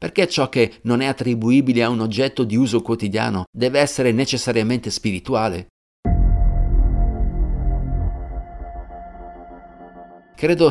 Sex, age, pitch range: male, 50-69, 100-135 Hz